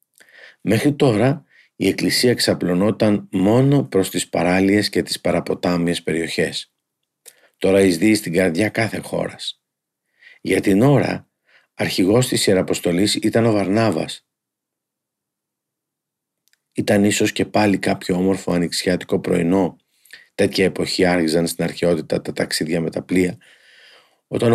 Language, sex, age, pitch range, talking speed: Greek, male, 50-69, 85-105 Hz, 115 wpm